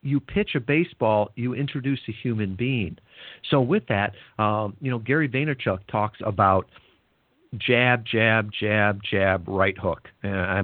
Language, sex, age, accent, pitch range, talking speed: English, male, 50-69, American, 100-150 Hz, 145 wpm